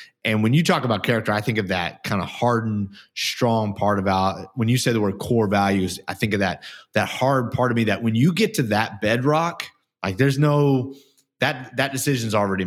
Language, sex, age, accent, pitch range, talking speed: English, male, 30-49, American, 95-125 Hz, 220 wpm